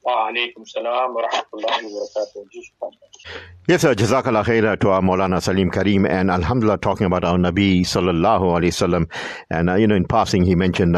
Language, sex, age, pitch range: English, male, 50-69, 85-105 Hz